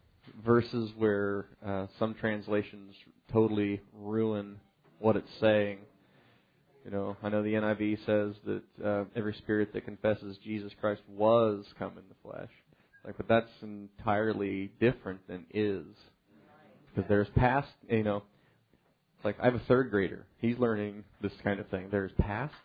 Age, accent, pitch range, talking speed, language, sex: 30-49, American, 100-110 Hz, 150 wpm, English, male